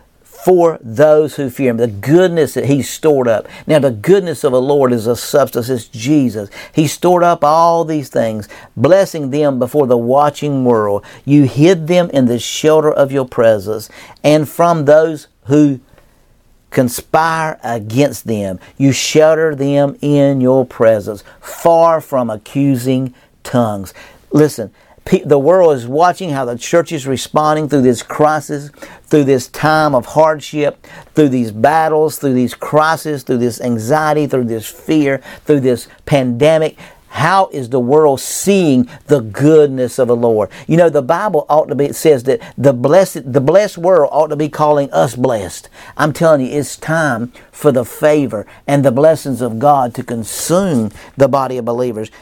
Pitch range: 125-155 Hz